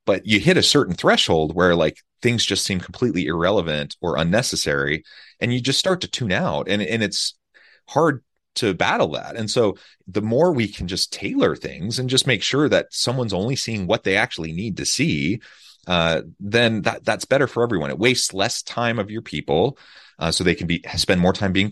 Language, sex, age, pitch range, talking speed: English, male, 30-49, 85-115 Hz, 205 wpm